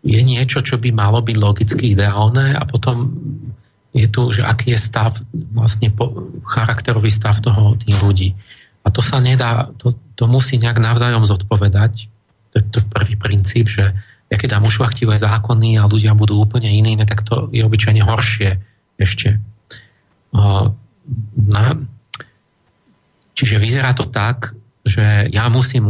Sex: male